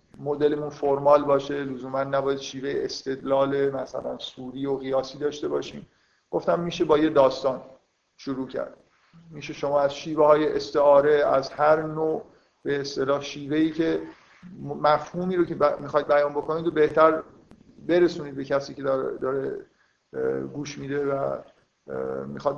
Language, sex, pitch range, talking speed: Persian, male, 140-160 Hz, 135 wpm